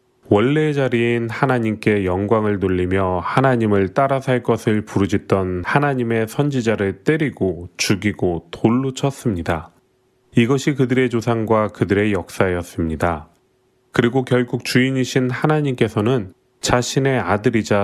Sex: male